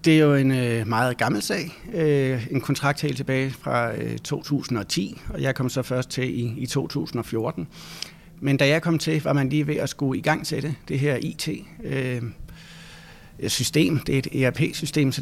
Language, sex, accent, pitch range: Danish, male, native, 120-150 Hz